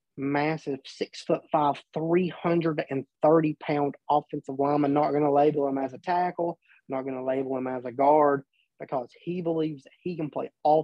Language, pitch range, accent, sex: English, 135-160 Hz, American, male